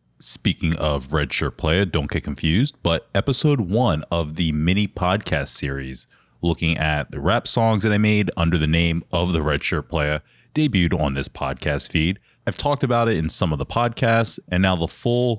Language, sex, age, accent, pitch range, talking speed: English, male, 30-49, American, 80-100 Hz, 195 wpm